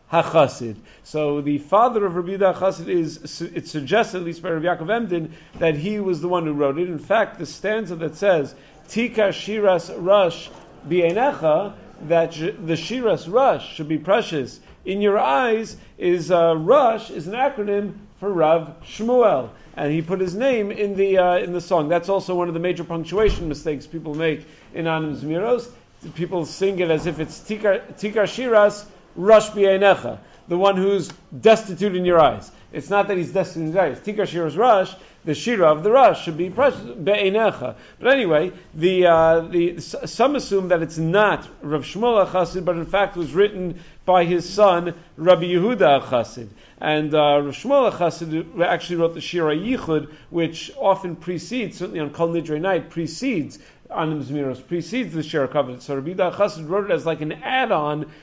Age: 50-69